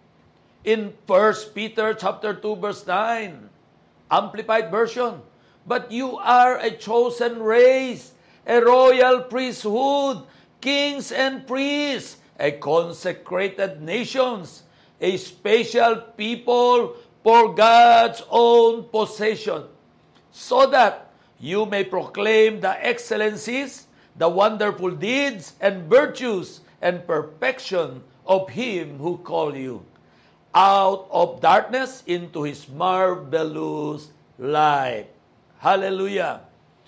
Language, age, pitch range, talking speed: Filipino, 50-69, 190-245 Hz, 95 wpm